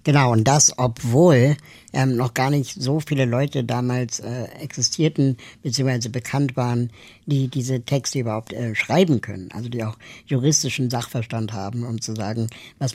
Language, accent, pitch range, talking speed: German, German, 115-135 Hz, 160 wpm